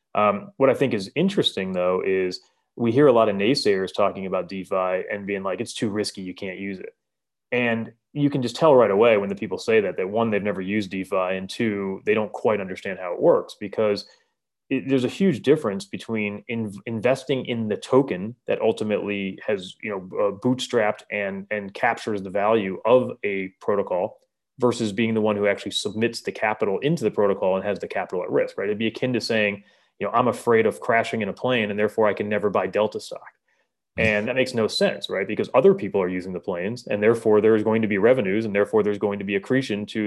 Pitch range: 100-130 Hz